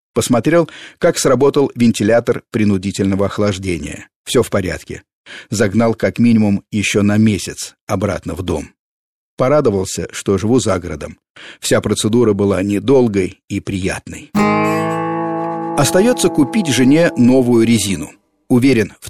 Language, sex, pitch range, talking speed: Russian, male, 100-125 Hz, 115 wpm